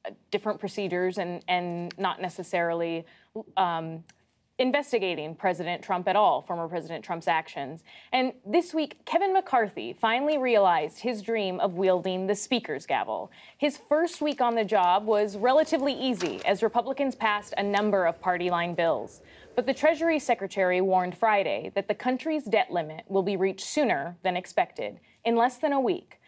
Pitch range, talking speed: 180-250 Hz, 160 wpm